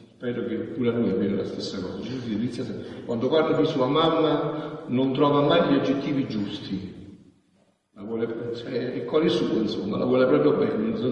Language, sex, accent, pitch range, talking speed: Italian, male, native, 105-150 Hz, 190 wpm